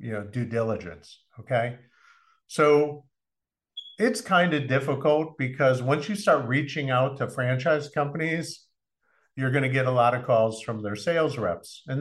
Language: English